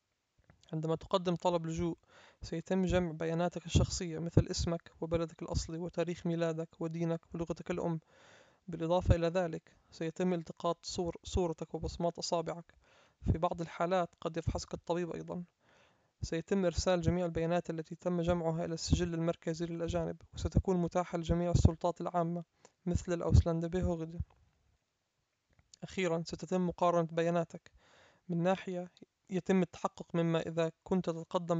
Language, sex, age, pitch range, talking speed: German, male, 20-39, 165-175 Hz, 120 wpm